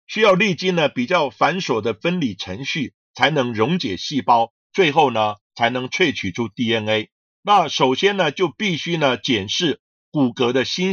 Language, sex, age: Chinese, male, 50-69